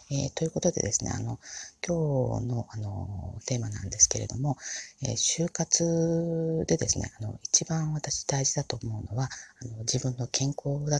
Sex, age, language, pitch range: female, 40-59, Japanese, 120-155 Hz